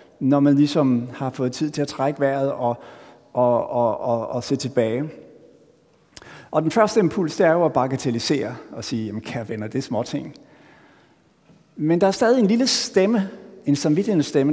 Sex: male